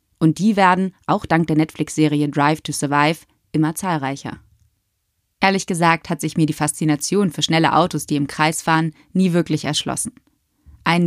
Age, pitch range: 20-39, 150-180 Hz